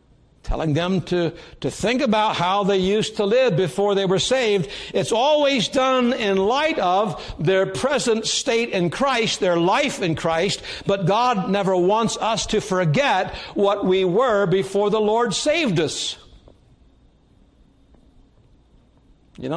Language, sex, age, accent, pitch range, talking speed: English, male, 60-79, American, 135-210 Hz, 140 wpm